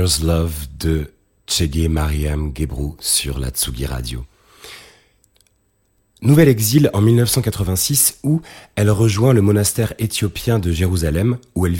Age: 30-49